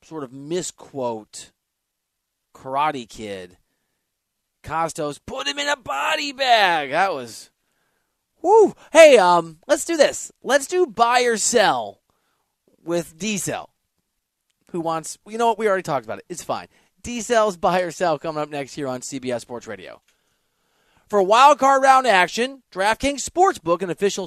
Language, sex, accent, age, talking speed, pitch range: English, male, American, 30-49, 150 wpm, 165-235 Hz